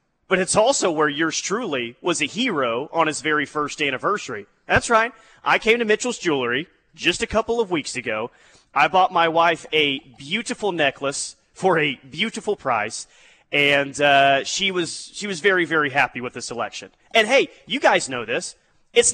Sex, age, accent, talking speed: male, 30-49, American, 180 wpm